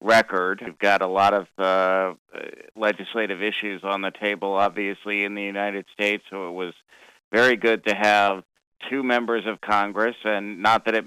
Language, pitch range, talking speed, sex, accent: English, 95-105 Hz, 175 wpm, male, American